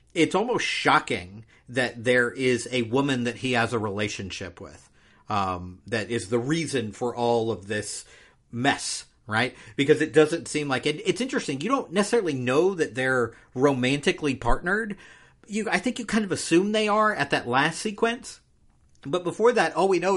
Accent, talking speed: American, 180 wpm